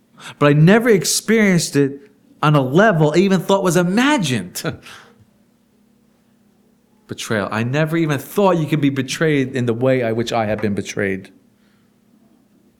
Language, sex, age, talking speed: English, male, 40-59, 145 wpm